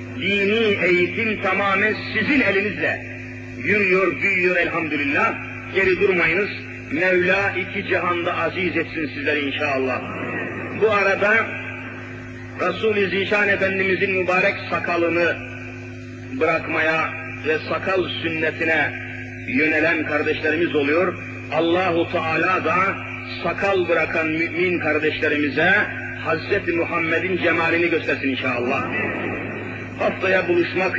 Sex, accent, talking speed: male, native, 85 wpm